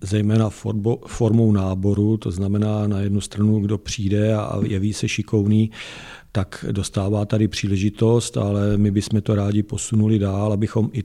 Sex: male